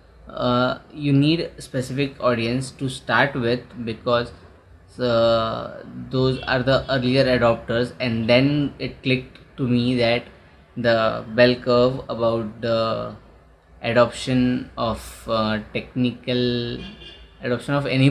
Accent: Indian